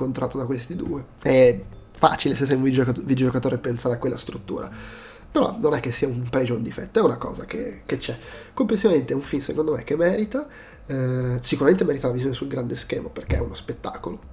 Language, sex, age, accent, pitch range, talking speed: Italian, male, 30-49, native, 125-145 Hz, 205 wpm